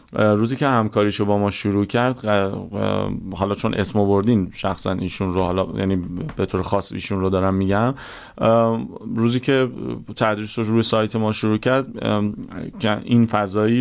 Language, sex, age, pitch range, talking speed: Persian, male, 30-49, 95-115 Hz, 150 wpm